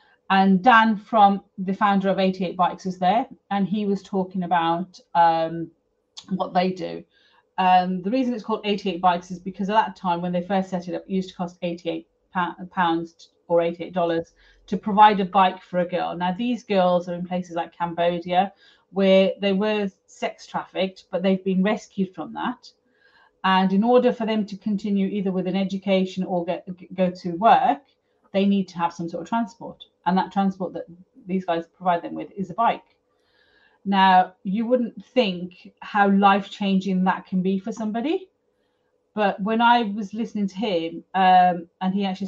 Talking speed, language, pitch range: 180 wpm, English, 175-200 Hz